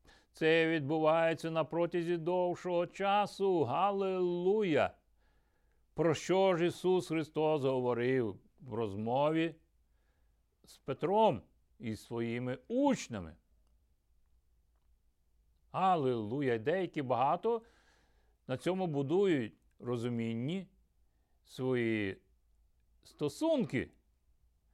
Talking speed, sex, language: 70 wpm, male, Ukrainian